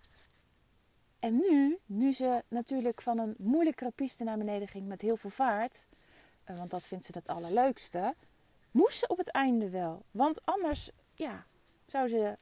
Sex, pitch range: female, 190-245 Hz